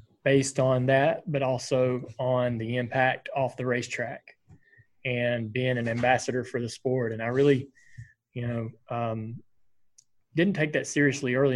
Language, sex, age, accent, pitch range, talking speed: English, male, 20-39, American, 115-130 Hz, 150 wpm